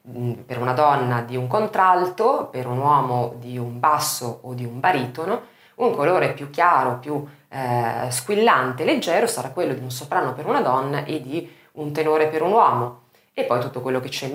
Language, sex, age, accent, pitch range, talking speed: Italian, female, 30-49, native, 125-175 Hz, 195 wpm